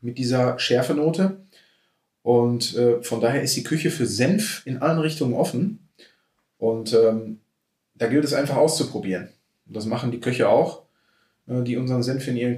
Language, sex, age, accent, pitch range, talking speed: German, male, 30-49, German, 120-155 Hz, 160 wpm